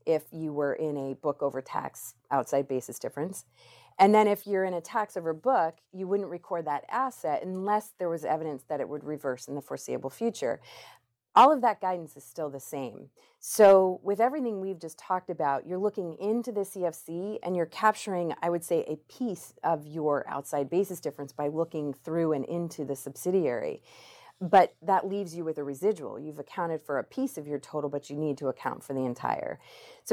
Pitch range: 145-190 Hz